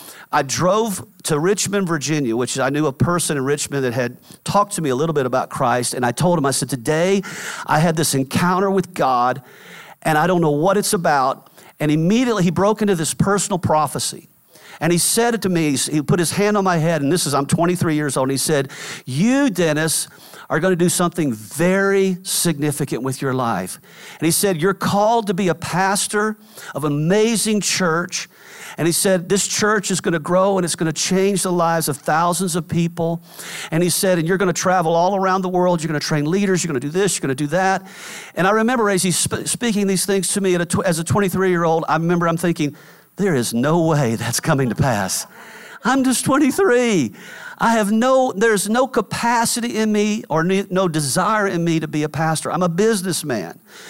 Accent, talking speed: American, 215 wpm